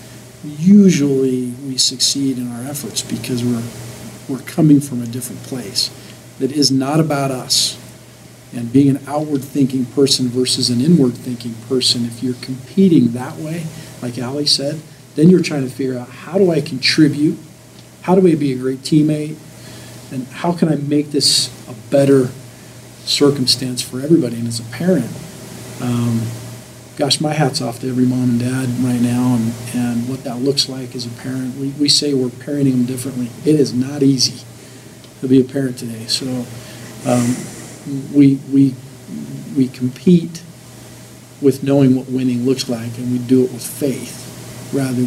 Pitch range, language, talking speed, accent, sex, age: 125-140 Hz, English, 170 wpm, American, male, 50-69